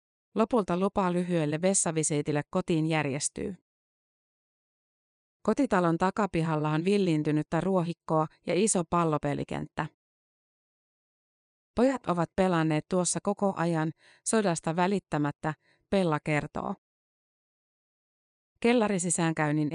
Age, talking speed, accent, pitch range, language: 30-49, 75 wpm, native, 155-190 Hz, Finnish